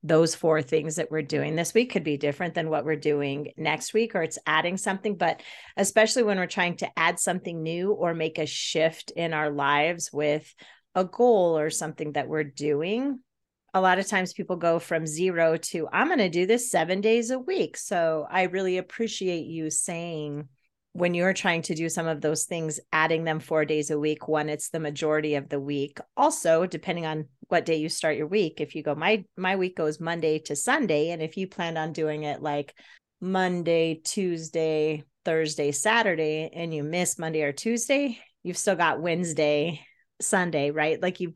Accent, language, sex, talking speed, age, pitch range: American, English, female, 195 wpm, 30-49, 155-185 Hz